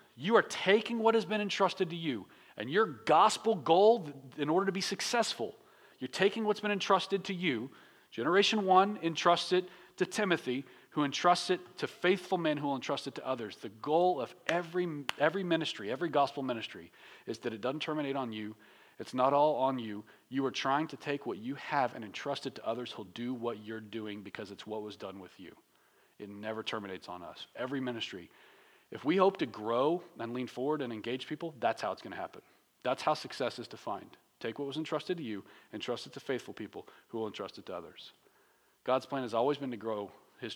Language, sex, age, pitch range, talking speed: English, male, 40-59, 120-170 Hz, 215 wpm